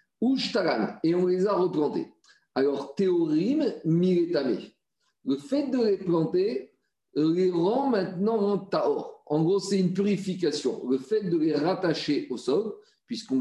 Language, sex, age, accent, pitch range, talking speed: French, male, 50-69, French, 145-215 Hz, 135 wpm